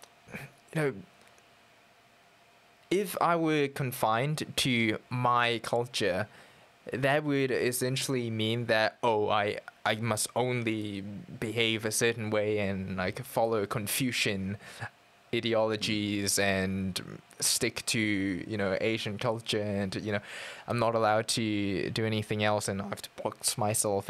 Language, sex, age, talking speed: English, male, 10-29, 130 wpm